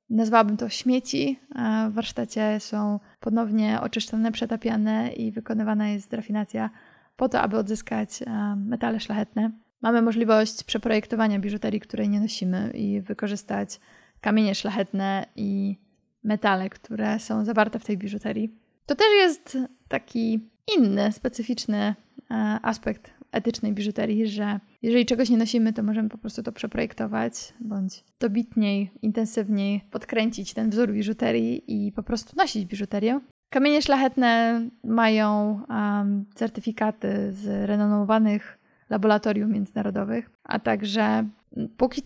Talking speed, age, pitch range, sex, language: 115 wpm, 20-39, 210-235 Hz, female, Polish